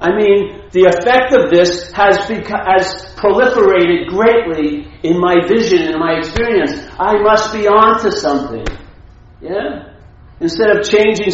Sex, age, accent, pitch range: male, 50-69, American, 125-210 Hz